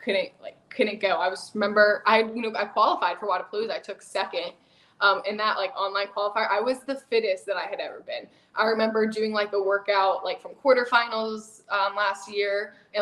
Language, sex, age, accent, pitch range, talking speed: English, female, 10-29, American, 200-245 Hz, 205 wpm